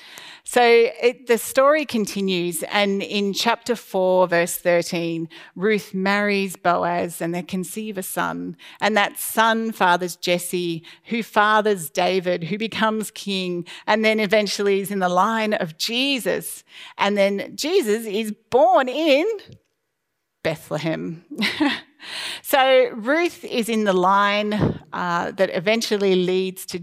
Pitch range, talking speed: 180-230 Hz, 125 wpm